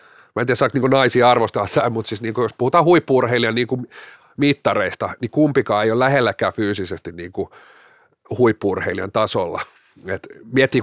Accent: native